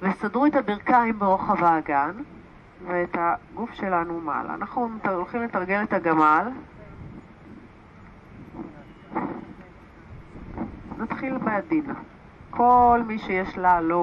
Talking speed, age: 90 wpm, 40-59